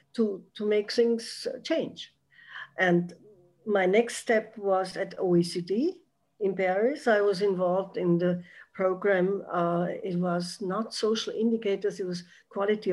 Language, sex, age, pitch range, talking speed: English, female, 60-79, 180-220 Hz, 135 wpm